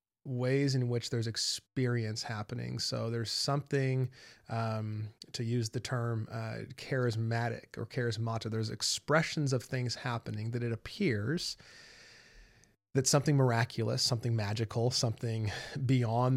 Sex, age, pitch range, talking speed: male, 30-49, 115-140 Hz, 120 wpm